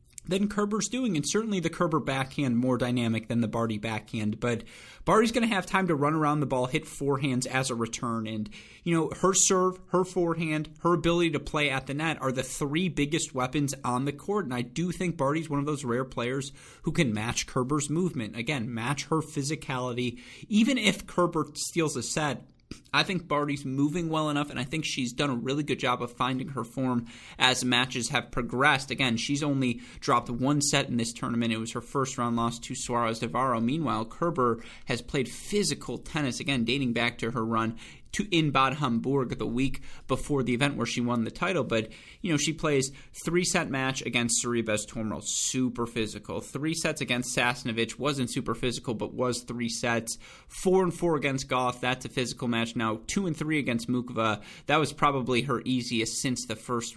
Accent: American